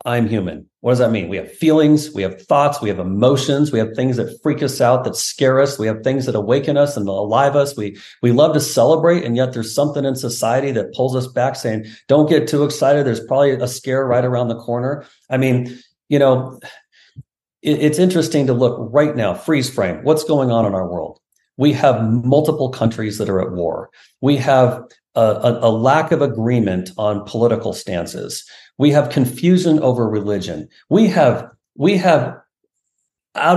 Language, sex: English, male